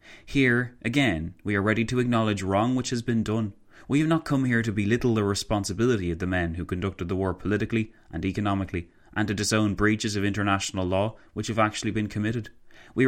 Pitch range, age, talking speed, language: 95-115 Hz, 20-39, 200 wpm, English